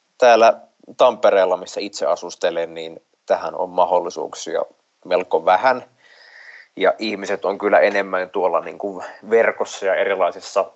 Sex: male